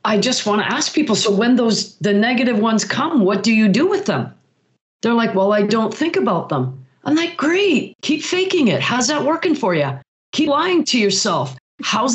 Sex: female